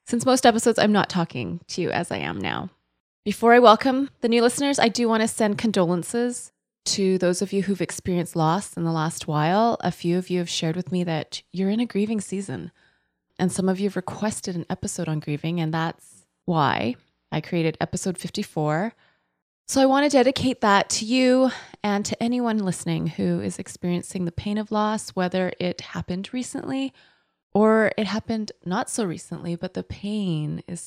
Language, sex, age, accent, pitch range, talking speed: English, female, 20-39, American, 165-220 Hz, 190 wpm